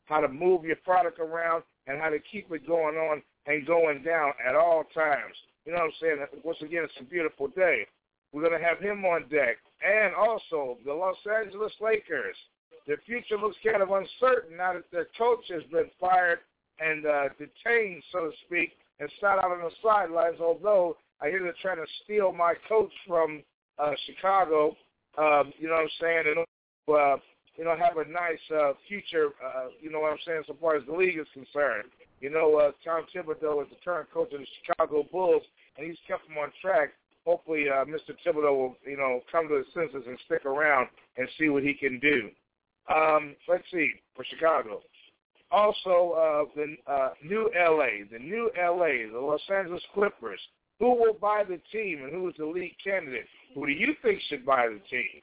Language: English